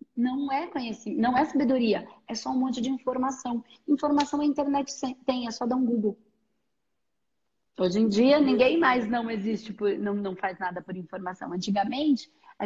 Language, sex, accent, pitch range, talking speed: Portuguese, female, Brazilian, 215-260 Hz, 175 wpm